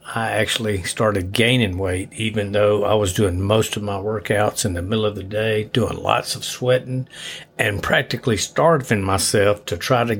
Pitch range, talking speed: 100-115 Hz, 180 wpm